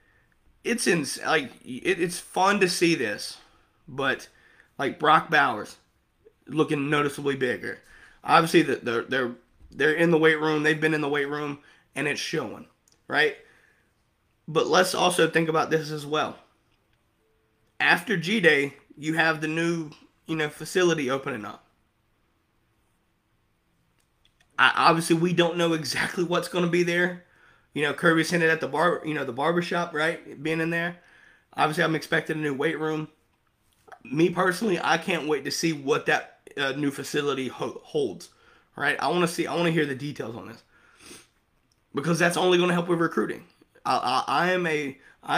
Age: 20-39